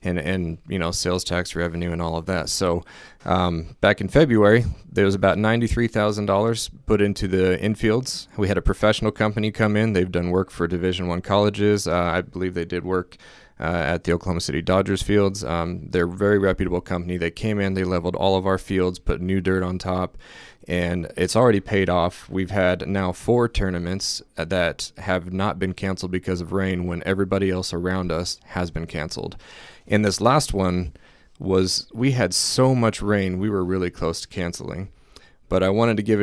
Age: 30-49